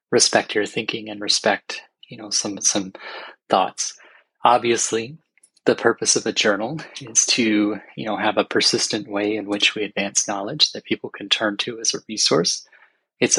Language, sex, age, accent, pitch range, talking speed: English, male, 20-39, American, 110-150 Hz, 170 wpm